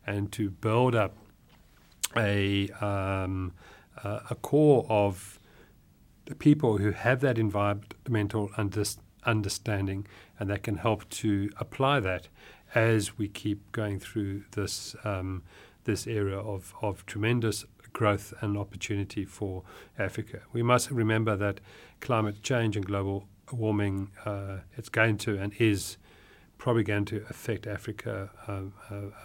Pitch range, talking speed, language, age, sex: 100-115 Hz, 130 wpm, English, 40-59, male